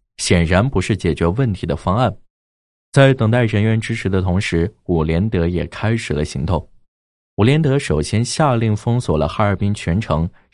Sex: male